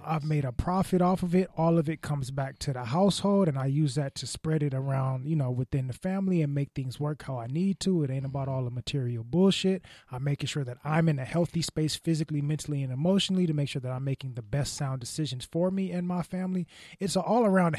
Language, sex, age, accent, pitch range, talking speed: English, male, 20-39, American, 130-165 Hz, 255 wpm